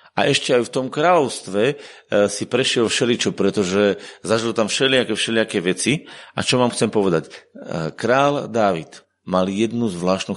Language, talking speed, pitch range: Slovak, 145 wpm, 95-115 Hz